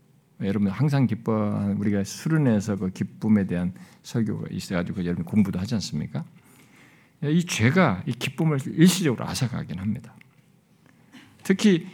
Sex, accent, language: male, native, Korean